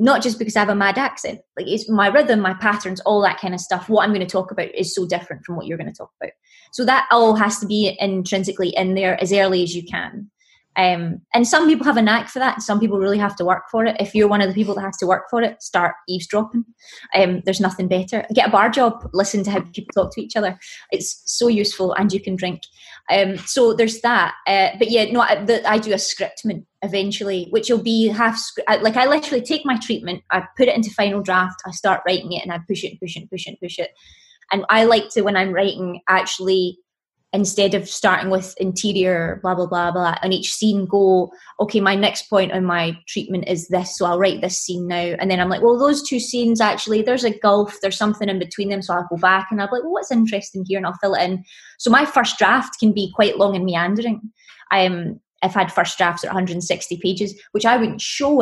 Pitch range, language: 185-220 Hz, English